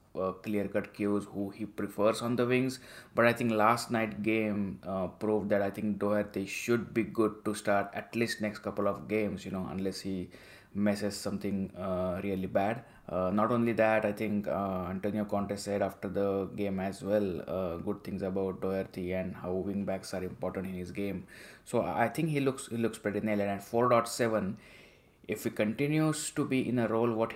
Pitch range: 100-115 Hz